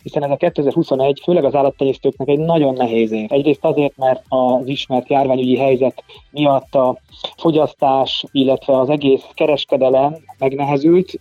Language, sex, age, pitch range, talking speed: Hungarian, male, 20-39, 130-150 Hz, 140 wpm